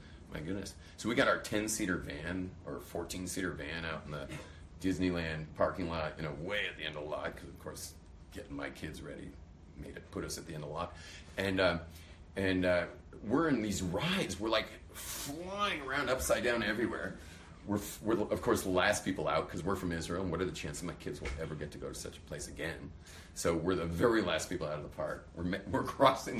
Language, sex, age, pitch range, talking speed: English, male, 40-59, 80-90 Hz, 225 wpm